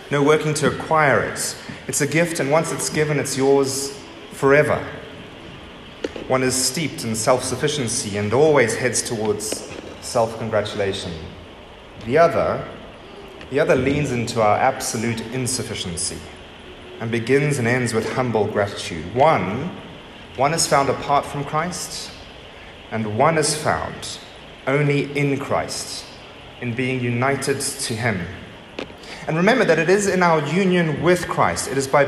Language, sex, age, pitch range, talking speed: English, male, 30-49, 120-155 Hz, 135 wpm